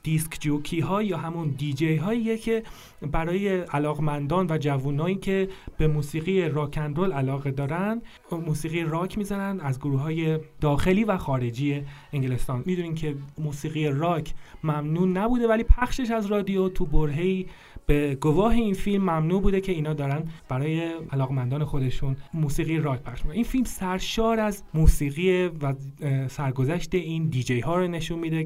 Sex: male